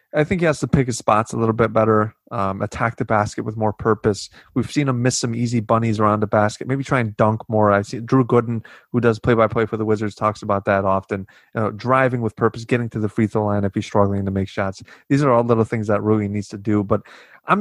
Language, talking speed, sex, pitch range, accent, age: English, 260 wpm, male, 110-130 Hz, American, 20-39